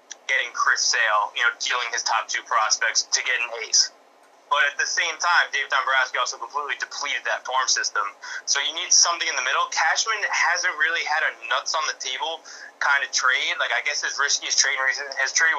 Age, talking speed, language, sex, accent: 20-39, 210 wpm, English, male, American